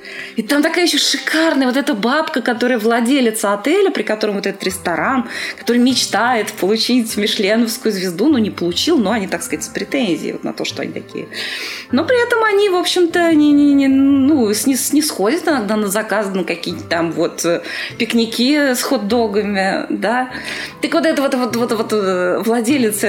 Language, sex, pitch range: Russian, female, 215-310 Hz